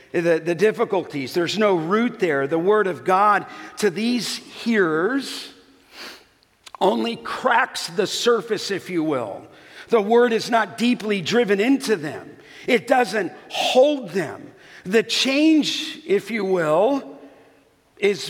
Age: 50-69